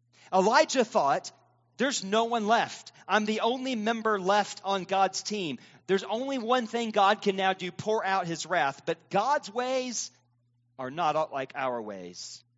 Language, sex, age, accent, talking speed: English, male, 40-59, American, 160 wpm